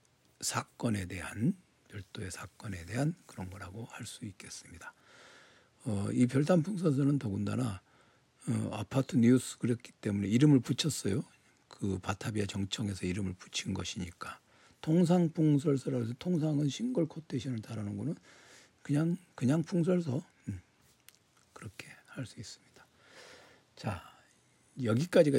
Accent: native